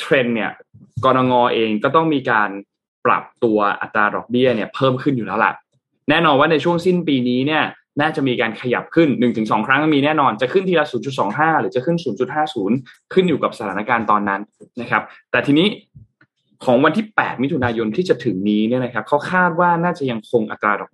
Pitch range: 115-150 Hz